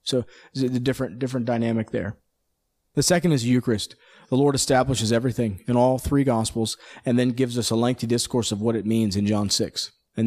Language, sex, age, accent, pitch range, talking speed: English, male, 40-59, American, 105-130 Hz, 200 wpm